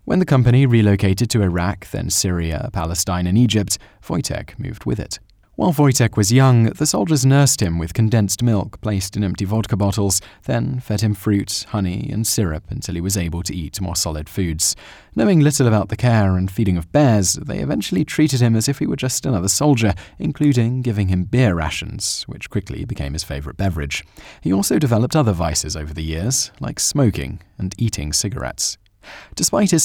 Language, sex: English, male